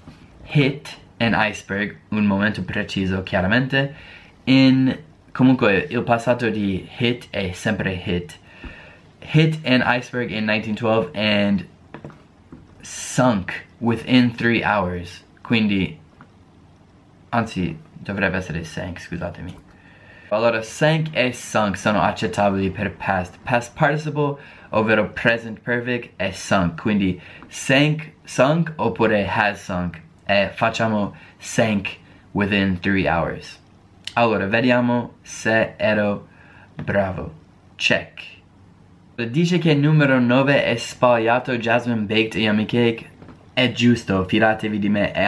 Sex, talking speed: male, 110 wpm